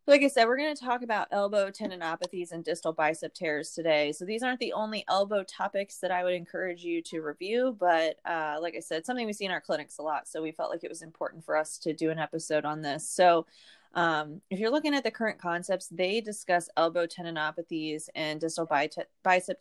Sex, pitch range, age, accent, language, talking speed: female, 160-195 Hz, 20-39, American, English, 225 wpm